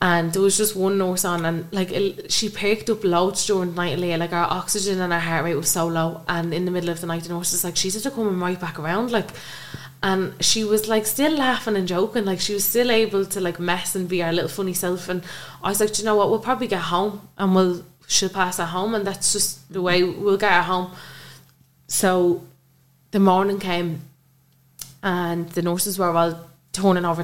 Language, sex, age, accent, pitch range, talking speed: English, female, 20-39, Irish, 170-195 Hz, 240 wpm